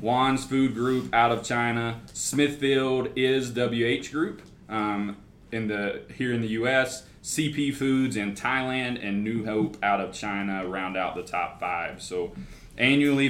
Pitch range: 100-125 Hz